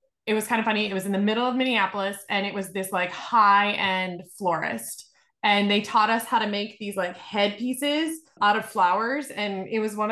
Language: English